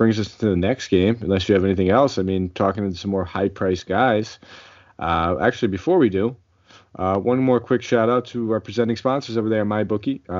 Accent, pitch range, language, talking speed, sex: American, 100-115 Hz, English, 215 wpm, male